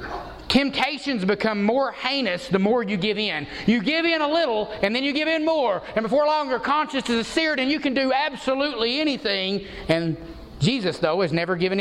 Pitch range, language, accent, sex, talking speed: 185-270 Hz, English, American, male, 200 wpm